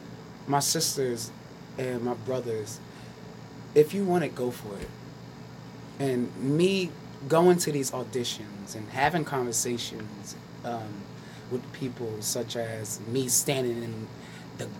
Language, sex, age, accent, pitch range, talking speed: English, male, 20-39, American, 120-155 Hz, 120 wpm